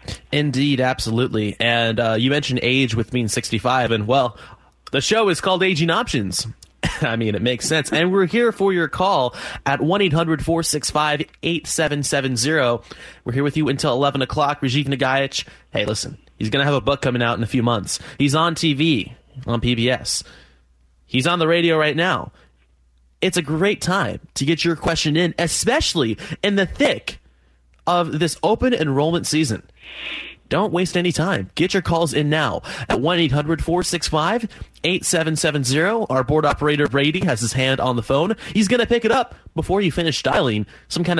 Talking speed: 170 wpm